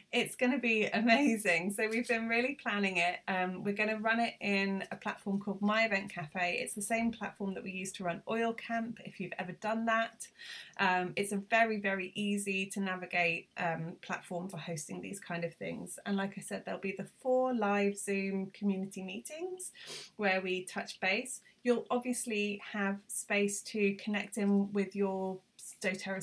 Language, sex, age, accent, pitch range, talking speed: English, female, 20-39, British, 185-215 Hz, 190 wpm